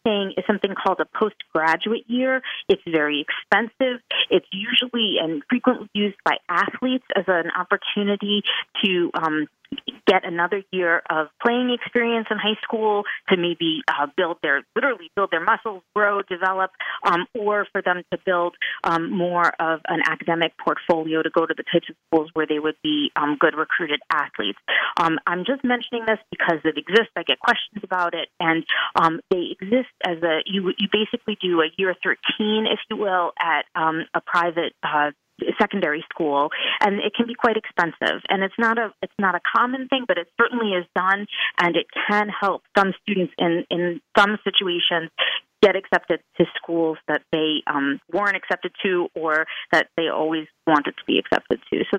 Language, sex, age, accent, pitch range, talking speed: English, female, 30-49, American, 170-215 Hz, 180 wpm